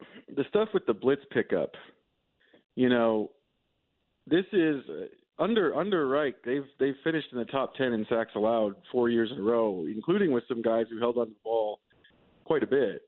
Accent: American